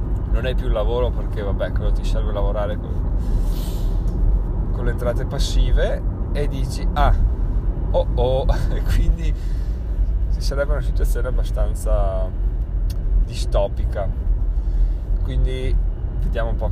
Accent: native